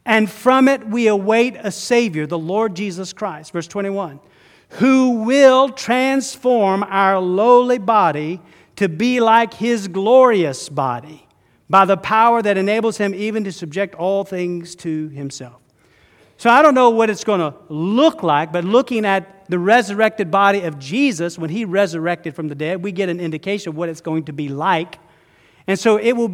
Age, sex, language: 40-59, male, English